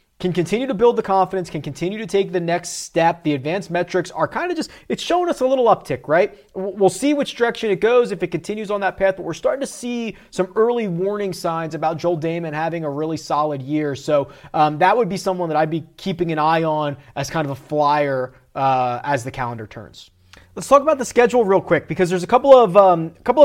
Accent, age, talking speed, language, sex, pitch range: American, 30-49, 235 wpm, English, male, 165-210 Hz